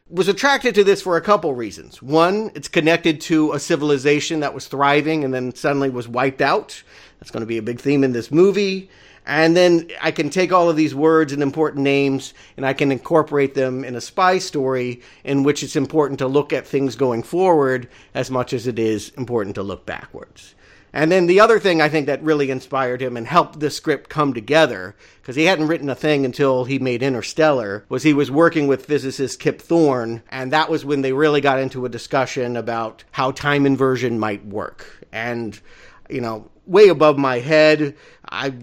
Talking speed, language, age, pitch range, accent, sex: 205 wpm, English, 50-69, 130-160 Hz, American, male